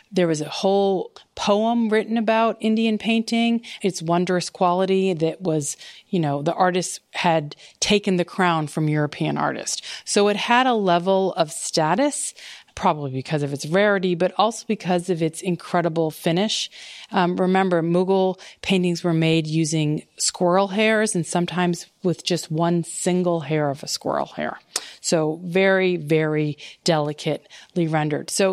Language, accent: English, American